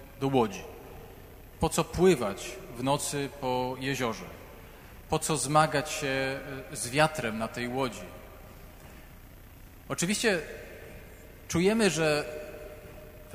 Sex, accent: male, native